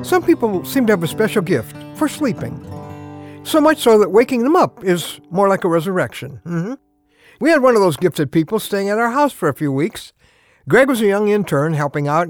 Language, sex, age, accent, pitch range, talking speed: English, male, 60-79, American, 150-215 Hz, 225 wpm